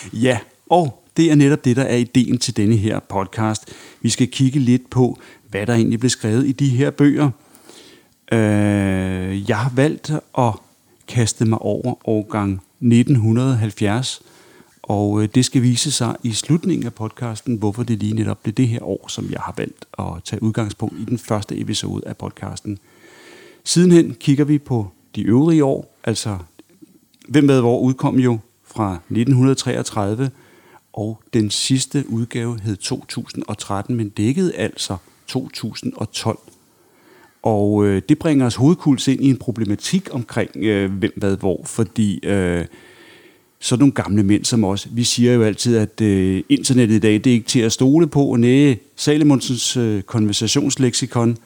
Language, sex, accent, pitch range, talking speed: Danish, male, native, 105-130 Hz, 155 wpm